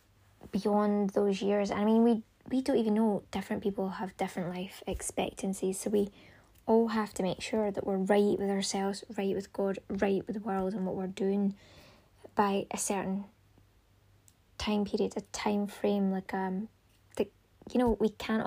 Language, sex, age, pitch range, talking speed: English, female, 20-39, 190-215 Hz, 175 wpm